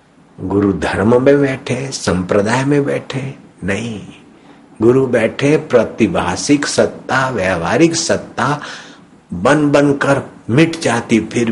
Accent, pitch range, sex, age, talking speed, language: native, 105-130 Hz, male, 60-79, 105 wpm, Hindi